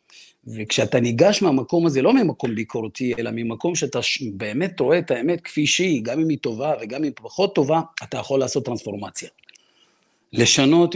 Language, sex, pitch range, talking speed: Hebrew, male, 125-165 Hz, 160 wpm